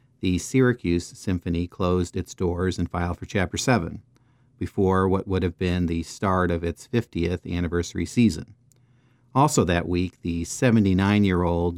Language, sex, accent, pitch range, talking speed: English, male, American, 90-120 Hz, 145 wpm